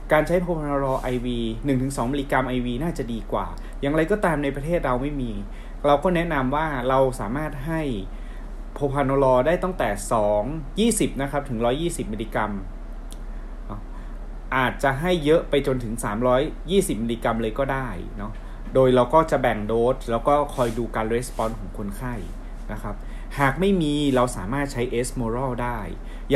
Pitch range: 115-145 Hz